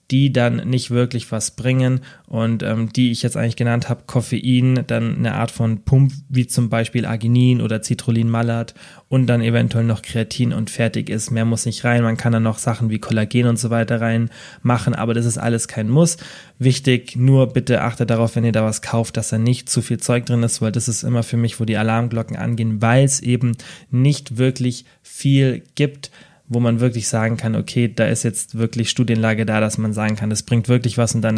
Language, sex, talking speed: German, male, 215 wpm